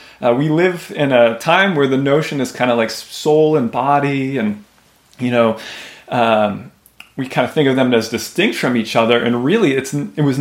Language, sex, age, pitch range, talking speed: English, male, 30-49, 115-145 Hz, 200 wpm